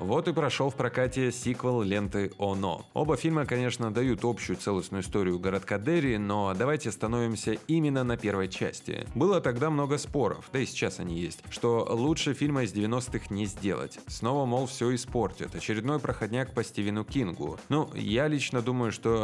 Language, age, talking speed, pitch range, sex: Russian, 20-39, 170 wpm, 100-130 Hz, male